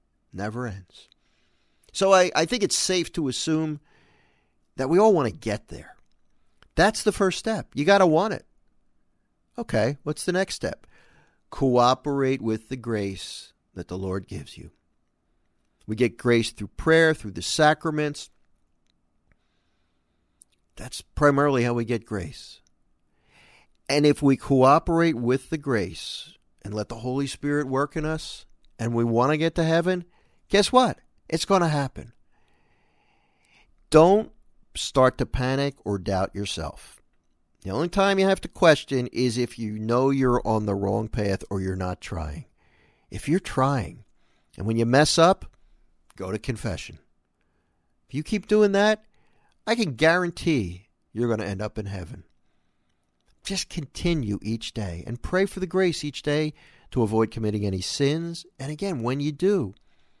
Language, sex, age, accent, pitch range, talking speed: English, male, 50-69, American, 95-160 Hz, 155 wpm